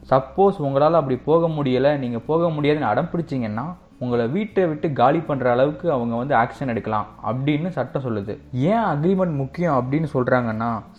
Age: 20-39